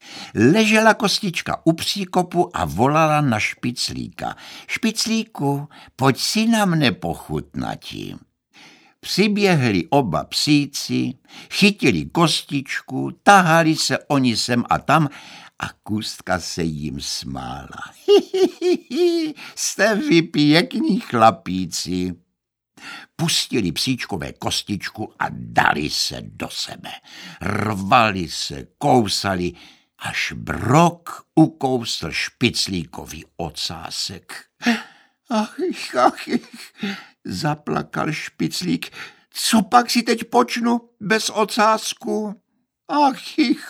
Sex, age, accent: male, 60-79, native